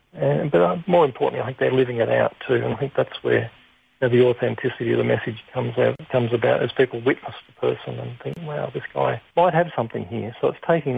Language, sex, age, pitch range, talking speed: English, male, 40-59, 120-140 Hz, 240 wpm